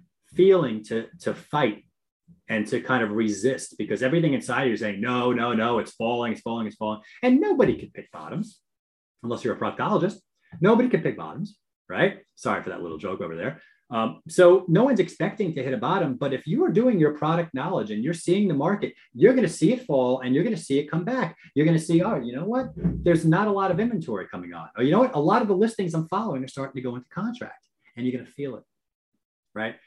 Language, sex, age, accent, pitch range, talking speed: English, male, 30-49, American, 125-190 Hz, 240 wpm